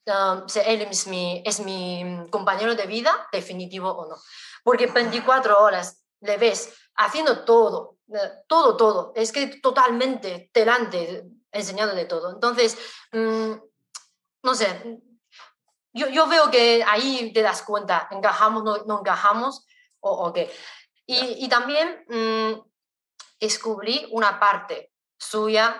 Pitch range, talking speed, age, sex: 195-240 Hz, 140 wpm, 20-39, female